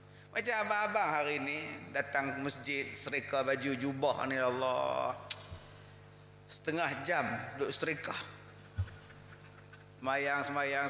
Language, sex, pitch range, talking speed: Malay, male, 135-200 Hz, 100 wpm